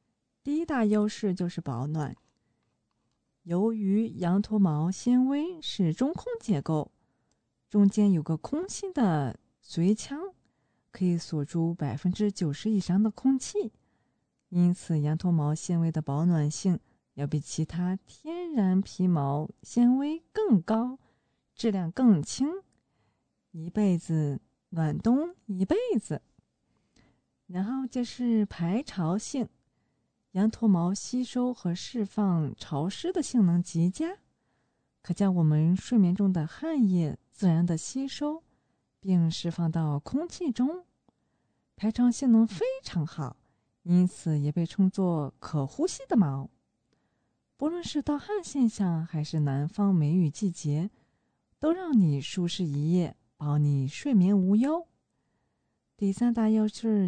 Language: English